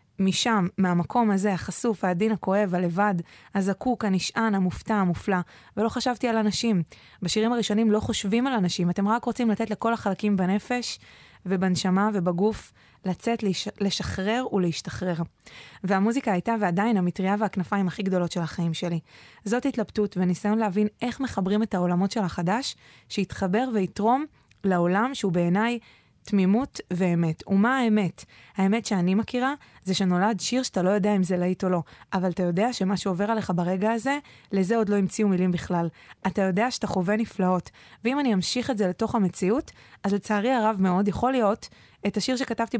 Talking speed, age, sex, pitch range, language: 145 wpm, 20-39, female, 185-225 Hz, English